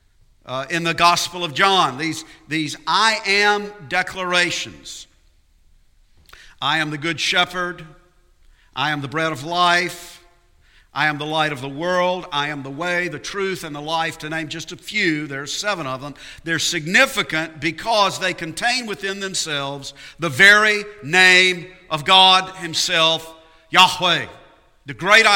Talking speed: 150 wpm